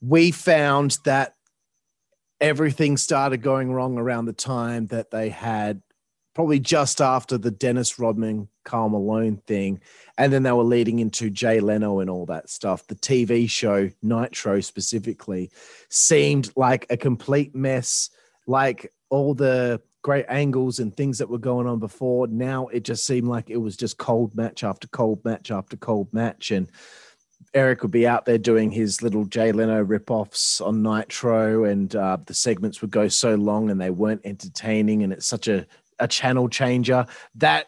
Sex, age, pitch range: male, 30-49, 105-125 Hz